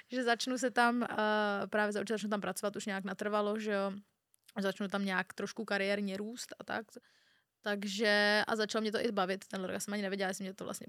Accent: native